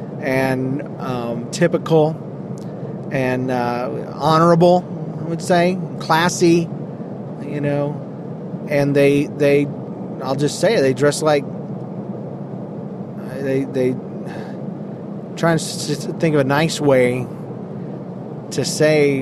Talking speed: 110 wpm